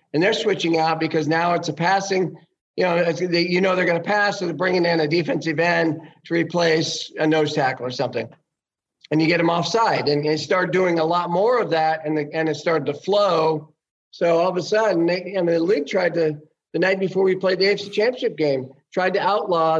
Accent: American